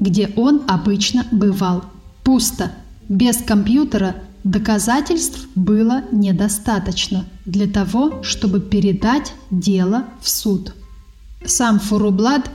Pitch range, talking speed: 195-240 Hz, 90 wpm